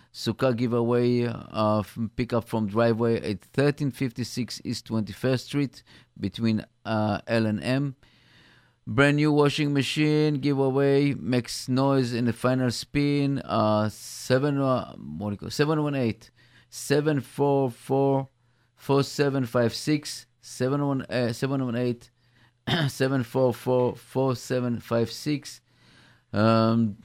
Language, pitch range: English, 115-135 Hz